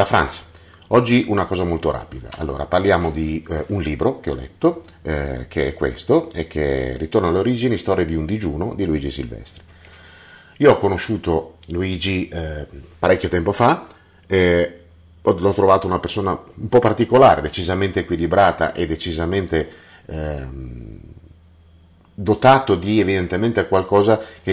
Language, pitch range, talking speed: Italian, 80-100 Hz, 145 wpm